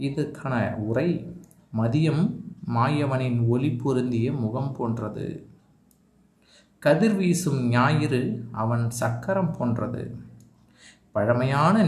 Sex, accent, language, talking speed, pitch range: male, native, Tamil, 65 wpm, 120-150 Hz